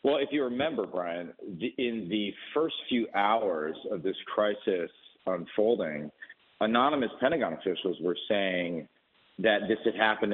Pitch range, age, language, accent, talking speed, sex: 105-130 Hz, 50-69, English, American, 135 wpm, male